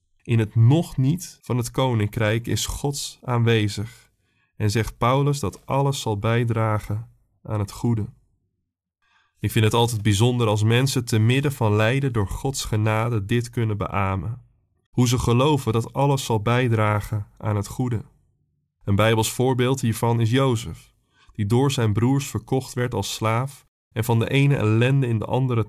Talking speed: 160 wpm